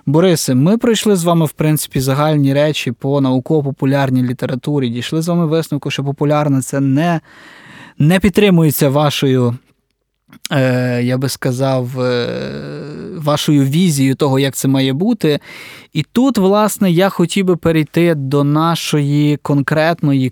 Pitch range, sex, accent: 135-165 Hz, male, native